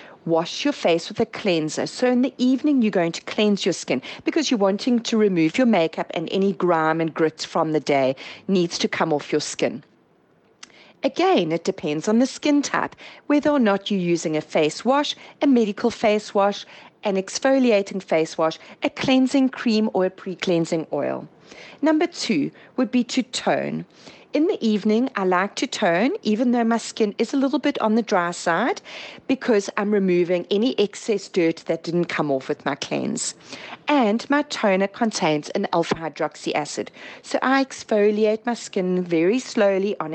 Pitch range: 170-250 Hz